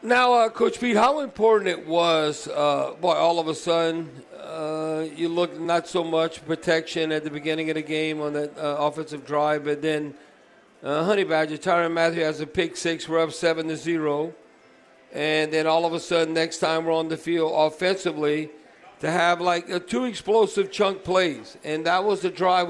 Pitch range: 160-180 Hz